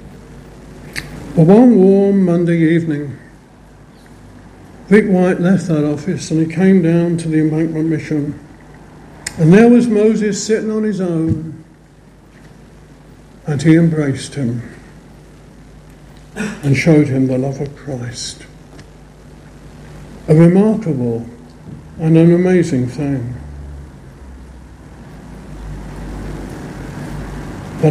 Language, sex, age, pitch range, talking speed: English, male, 60-79, 150-200 Hz, 95 wpm